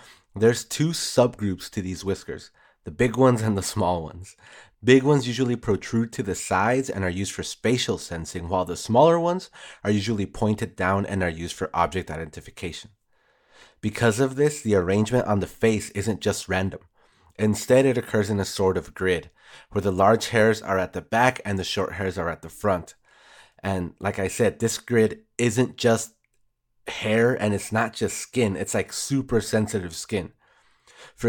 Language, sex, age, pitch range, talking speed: English, male, 30-49, 95-120 Hz, 180 wpm